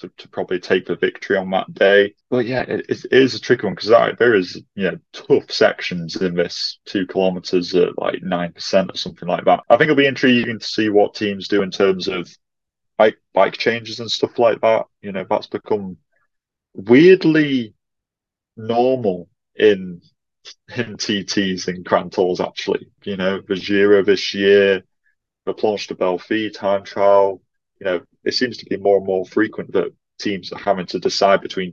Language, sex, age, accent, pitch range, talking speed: English, male, 20-39, British, 95-115 Hz, 180 wpm